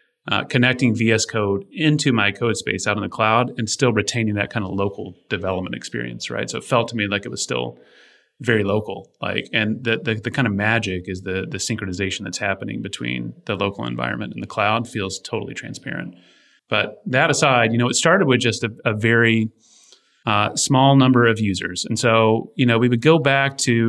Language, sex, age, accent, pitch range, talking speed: English, male, 30-49, American, 105-125 Hz, 210 wpm